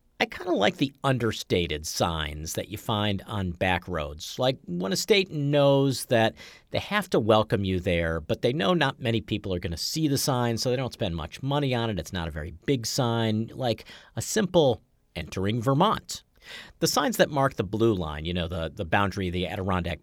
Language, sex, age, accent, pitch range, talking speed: English, male, 50-69, American, 100-155 Hz, 215 wpm